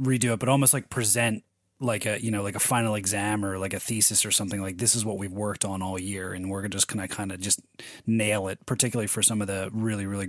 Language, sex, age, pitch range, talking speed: English, male, 30-49, 100-125 Hz, 280 wpm